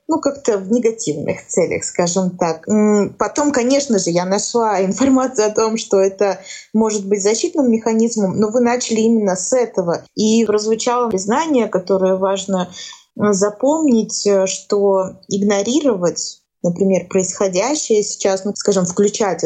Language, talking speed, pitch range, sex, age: Russian, 125 wpm, 180-215 Hz, female, 20-39